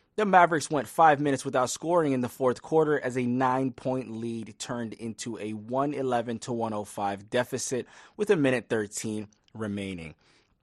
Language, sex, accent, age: English, male, American, 30-49